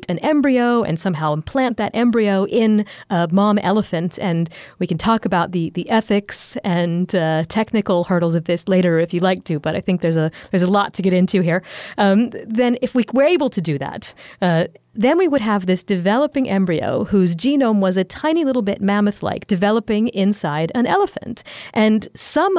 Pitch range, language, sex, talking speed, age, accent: 180-220 Hz, English, female, 195 wpm, 40-59, American